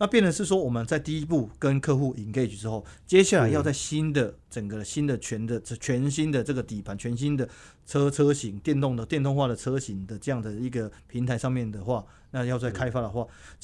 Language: Chinese